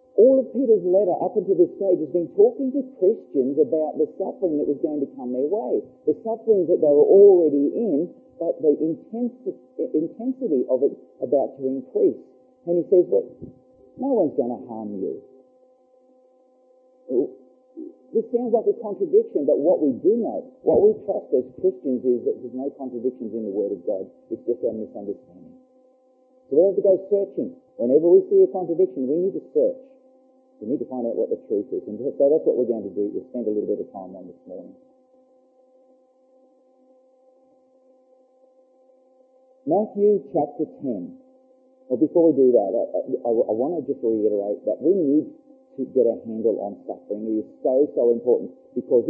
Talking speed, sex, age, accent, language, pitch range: 185 wpm, male, 40-59, Australian, English, 175-285 Hz